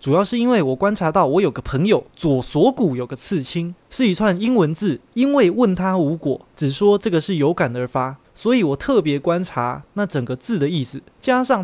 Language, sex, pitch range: Chinese, male, 140-205 Hz